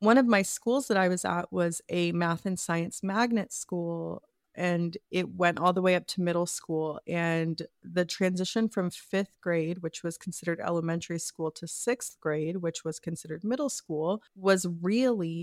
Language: English